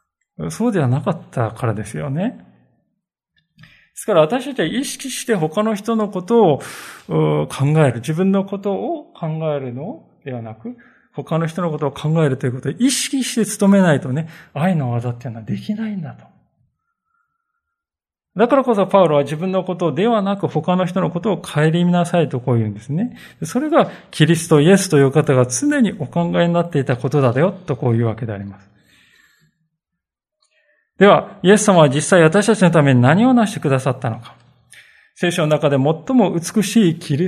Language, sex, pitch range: Japanese, male, 135-200 Hz